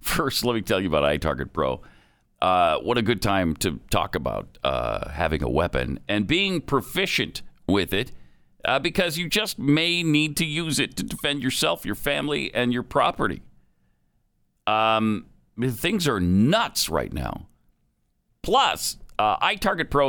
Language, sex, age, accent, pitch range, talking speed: English, male, 50-69, American, 90-135 Hz, 155 wpm